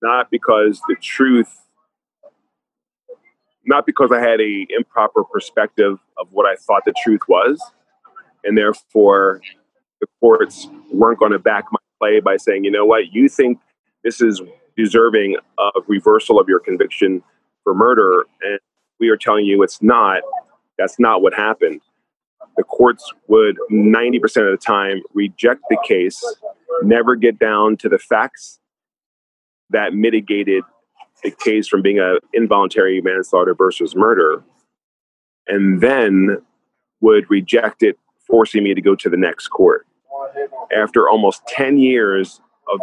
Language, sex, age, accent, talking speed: English, male, 30-49, American, 140 wpm